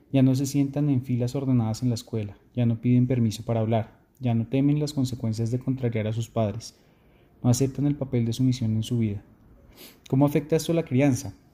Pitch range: 115-140 Hz